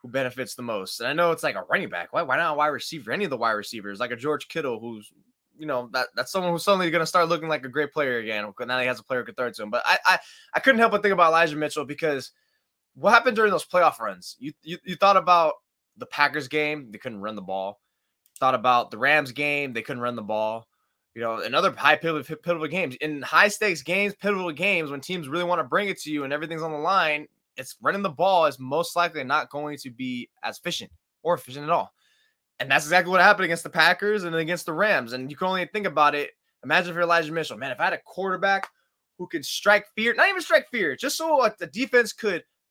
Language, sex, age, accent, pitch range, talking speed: English, male, 20-39, American, 145-200 Hz, 250 wpm